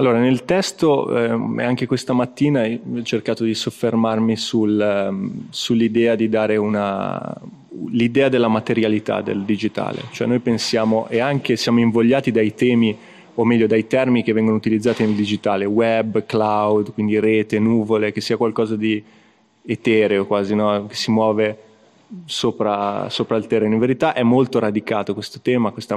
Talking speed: 155 wpm